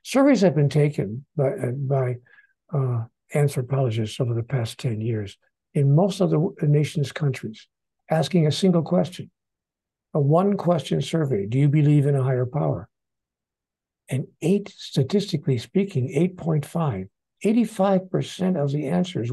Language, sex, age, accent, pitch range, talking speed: English, male, 60-79, American, 140-185 Hz, 135 wpm